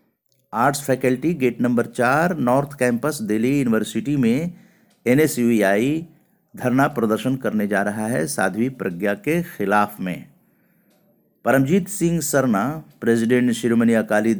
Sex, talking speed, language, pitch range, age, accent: male, 115 wpm, Hindi, 120-185 Hz, 50-69, native